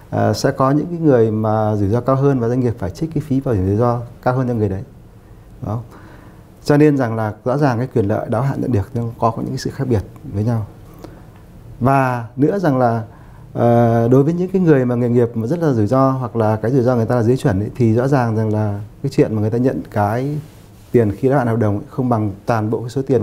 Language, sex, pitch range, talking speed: Vietnamese, male, 110-140 Hz, 270 wpm